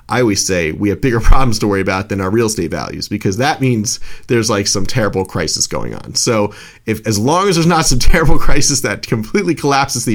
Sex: male